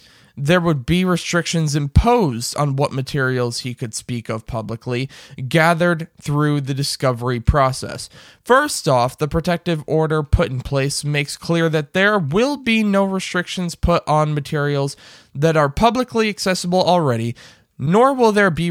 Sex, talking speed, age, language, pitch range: male, 150 wpm, 20-39, English, 135-180 Hz